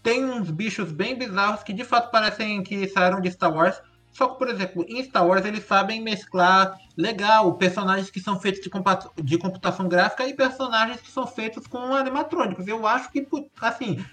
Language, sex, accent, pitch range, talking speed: Portuguese, male, Brazilian, 180-270 Hz, 185 wpm